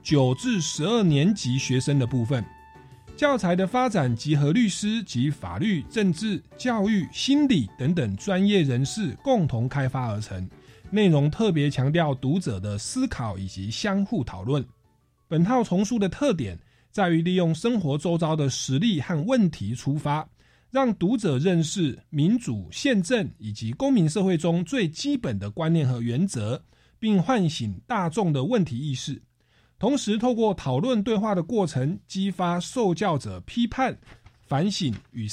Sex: male